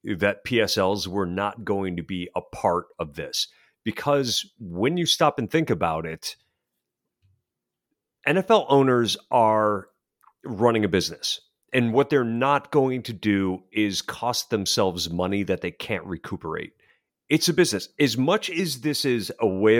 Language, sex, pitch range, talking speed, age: English, male, 95-140 Hz, 150 wpm, 40-59